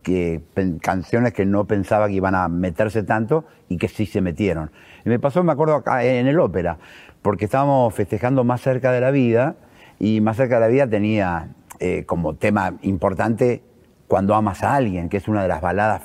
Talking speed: 200 wpm